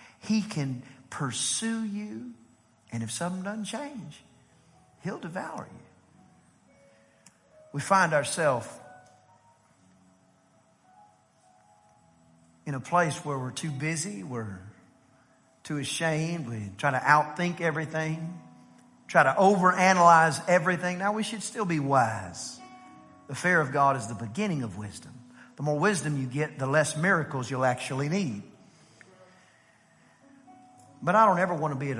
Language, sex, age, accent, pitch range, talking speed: English, male, 50-69, American, 125-185 Hz, 130 wpm